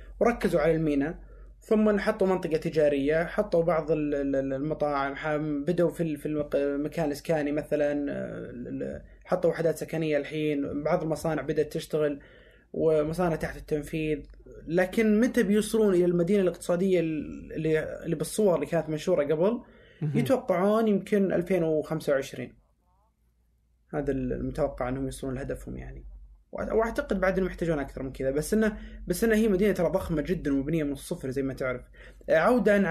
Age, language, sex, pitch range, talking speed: 20-39, Arabic, male, 150-195 Hz, 130 wpm